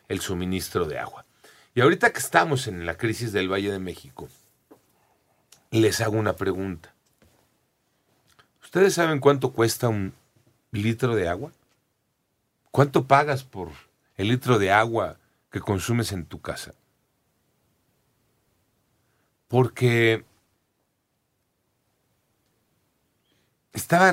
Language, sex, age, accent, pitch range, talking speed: Spanish, male, 40-59, Mexican, 95-125 Hz, 100 wpm